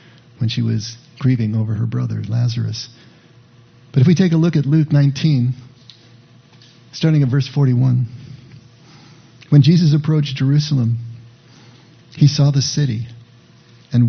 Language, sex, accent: English, male, American